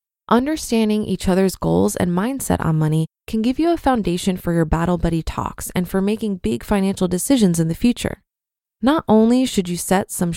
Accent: American